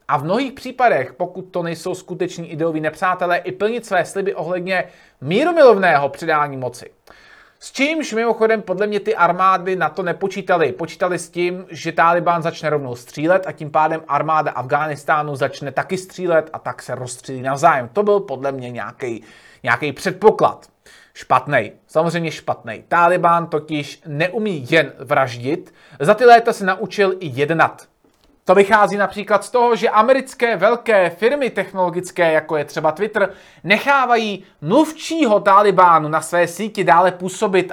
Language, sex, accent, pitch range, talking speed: Czech, male, native, 155-215 Hz, 145 wpm